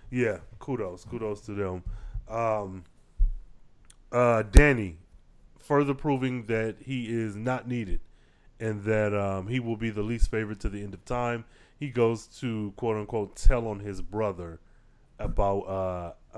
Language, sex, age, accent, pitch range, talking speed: English, male, 30-49, American, 100-130 Hz, 145 wpm